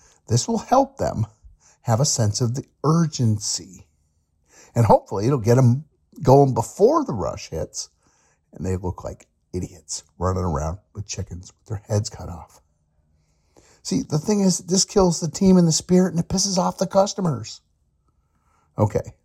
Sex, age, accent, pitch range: male, 50-69, American, 95-150 Hz